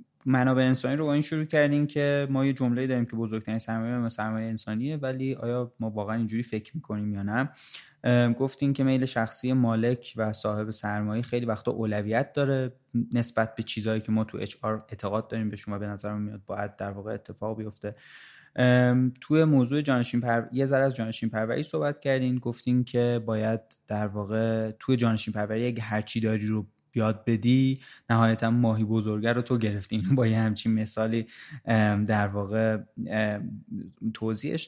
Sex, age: male, 20-39